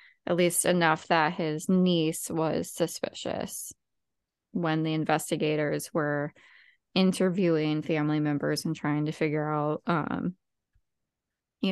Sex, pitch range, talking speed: female, 170-210 Hz, 115 wpm